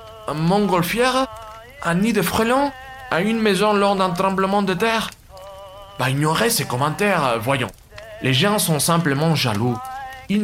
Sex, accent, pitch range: male, French, 105-175 Hz